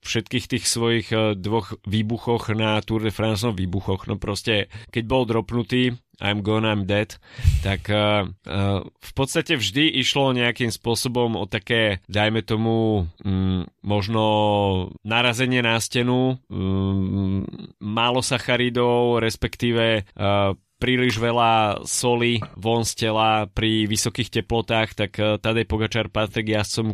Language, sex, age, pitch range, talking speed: Slovak, male, 20-39, 105-120 Hz, 125 wpm